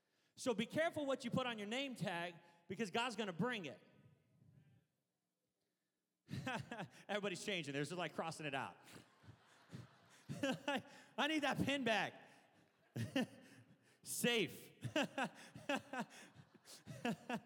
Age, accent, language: 30-49, American, English